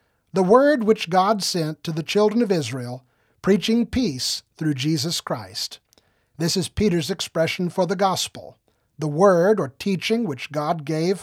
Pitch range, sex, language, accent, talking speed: 145-195 Hz, male, English, American, 155 wpm